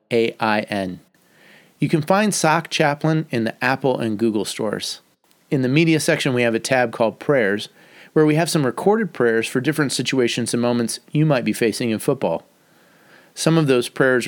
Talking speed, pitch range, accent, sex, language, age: 180 wpm, 115-150 Hz, American, male, English, 40-59